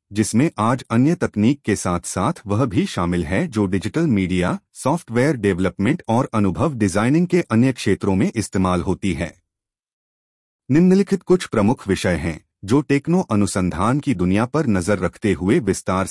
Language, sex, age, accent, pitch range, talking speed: Hindi, male, 30-49, native, 90-135 Hz, 155 wpm